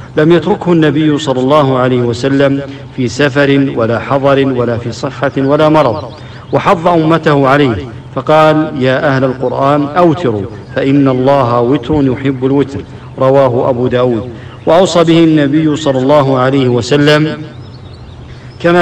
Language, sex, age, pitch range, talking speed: English, male, 50-69, 130-150 Hz, 130 wpm